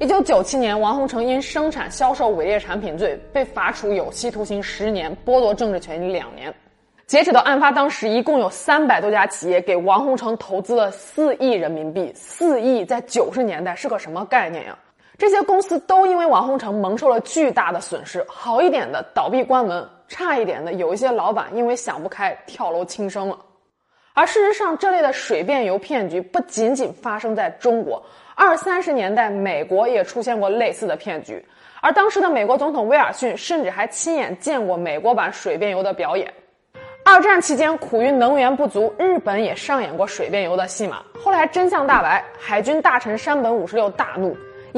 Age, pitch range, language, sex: 20-39, 200-295 Hz, Chinese, female